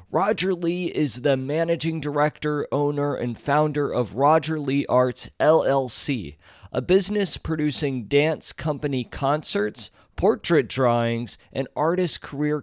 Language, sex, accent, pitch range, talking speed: English, male, American, 125-155 Hz, 120 wpm